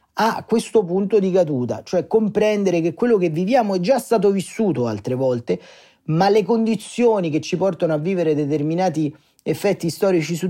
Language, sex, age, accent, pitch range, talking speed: Italian, male, 40-59, native, 140-185 Hz, 165 wpm